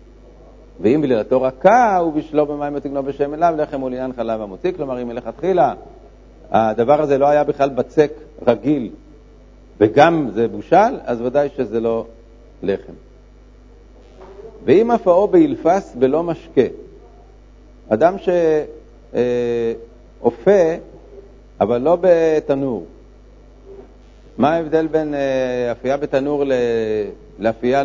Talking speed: 100 wpm